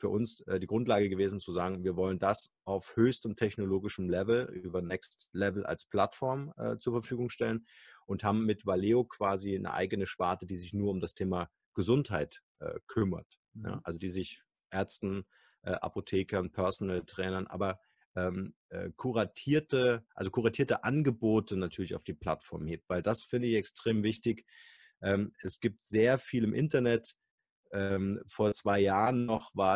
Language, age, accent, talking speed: German, 30-49, German, 145 wpm